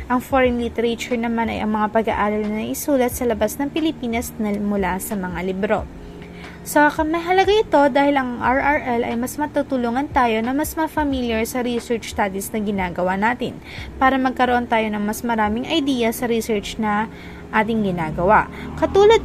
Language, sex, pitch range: Filipino, female, 215-280 Hz